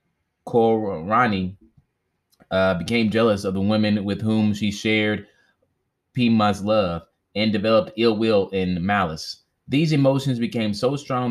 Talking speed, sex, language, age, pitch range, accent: 125 wpm, male, English, 20-39, 100-120 Hz, American